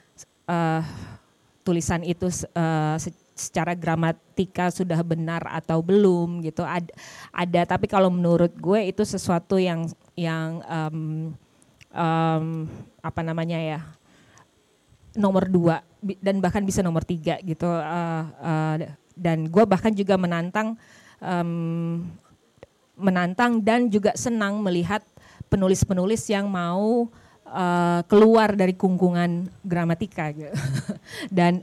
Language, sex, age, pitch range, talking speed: Indonesian, female, 20-39, 170-200 Hz, 110 wpm